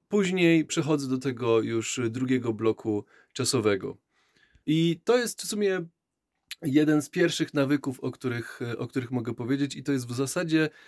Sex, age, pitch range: male, 20-39, 115-155 Hz